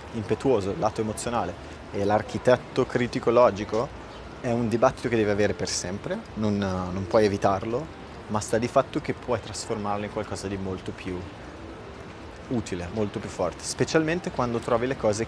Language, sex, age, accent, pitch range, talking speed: Italian, male, 30-49, native, 100-120 Hz, 160 wpm